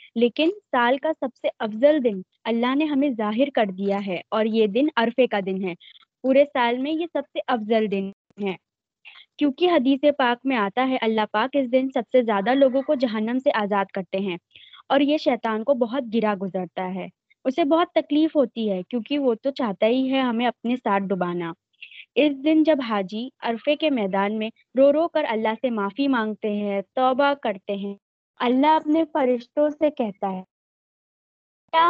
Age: 20-39